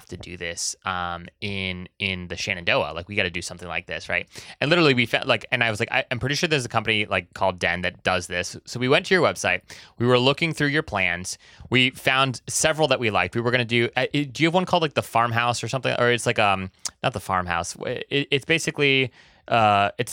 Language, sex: English, male